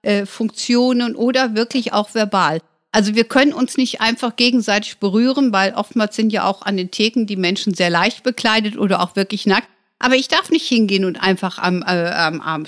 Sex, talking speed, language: female, 195 wpm, German